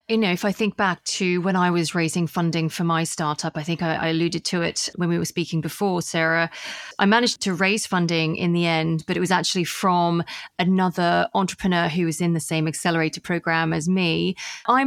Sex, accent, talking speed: female, British, 215 wpm